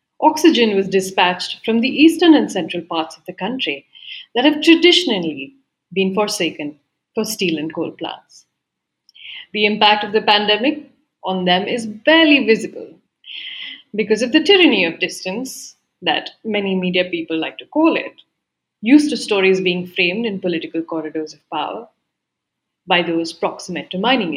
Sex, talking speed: female, 150 wpm